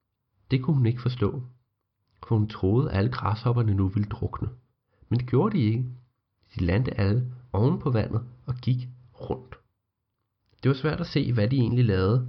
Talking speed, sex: 180 wpm, male